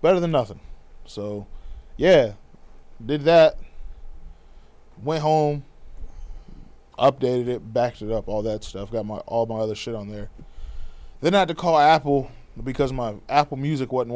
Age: 20-39